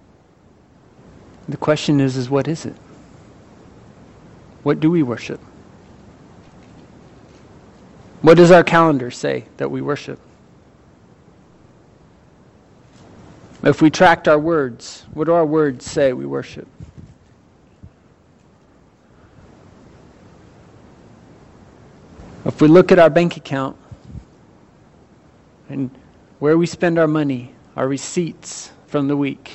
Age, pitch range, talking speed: 40-59, 140-175 Hz, 100 wpm